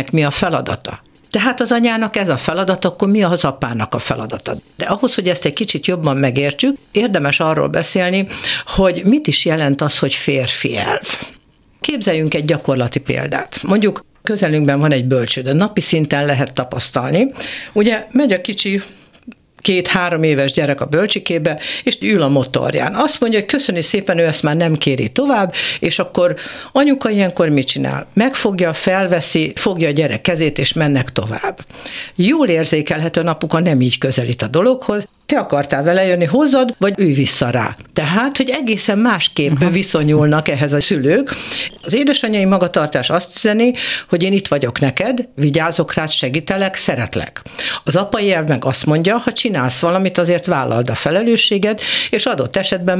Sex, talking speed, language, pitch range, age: female, 160 wpm, Hungarian, 150-205 Hz, 60-79